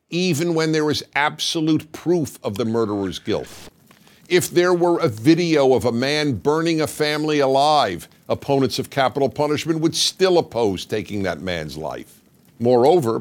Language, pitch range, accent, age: English, 120-165 Hz, American, 50-69